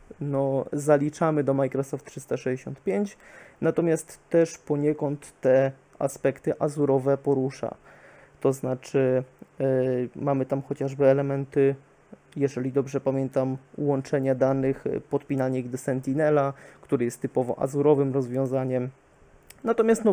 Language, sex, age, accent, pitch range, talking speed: Polish, male, 20-39, native, 135-150 Hz, 100 wpm